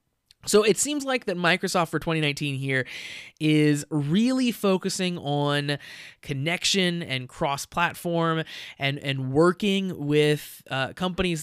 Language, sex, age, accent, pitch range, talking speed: English, male, 20-39, American, 140-175 Hz, 115 wpm